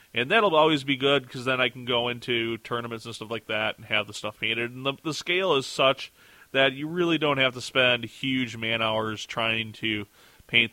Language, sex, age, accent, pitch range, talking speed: English, male, 20-39, American, 110-130 Hz, 225 wpm